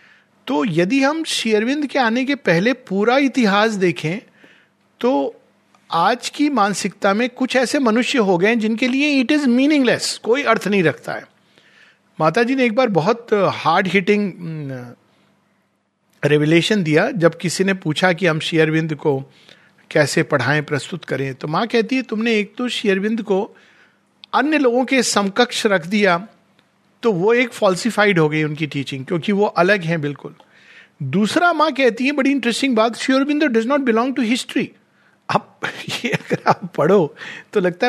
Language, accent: Hindi, native